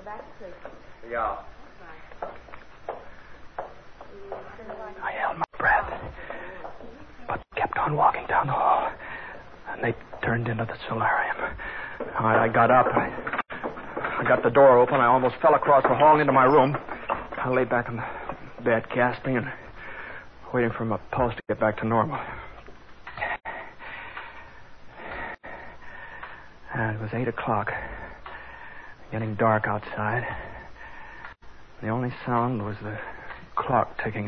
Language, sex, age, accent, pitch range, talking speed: English, male, 60-79, American, 105-125 Hz, 120 wpm